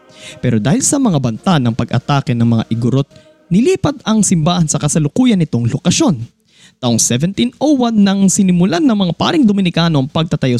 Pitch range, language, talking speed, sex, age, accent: 130-200 Hz, Filipino, 145 wpm, male, 20-39, native